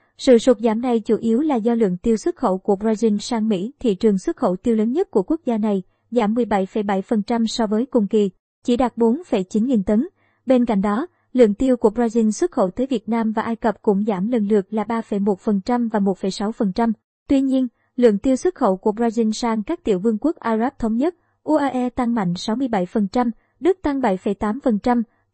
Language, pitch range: Vietnamese, 215-255 Hz